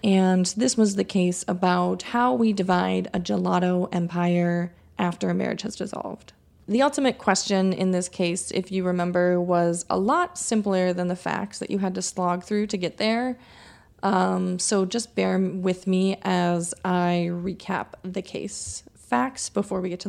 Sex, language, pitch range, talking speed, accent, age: female, English, 180-210 Hz, 175 wpm, American, 20-39